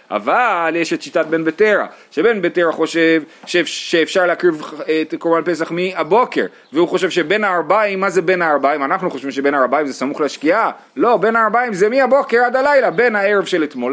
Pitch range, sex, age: 155-225 Hz, male, 30-49